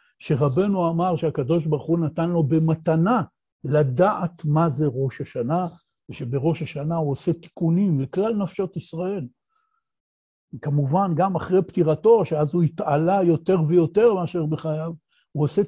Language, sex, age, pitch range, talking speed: Hebrew, male, 60-79, 155-195 Hz, 130 wpm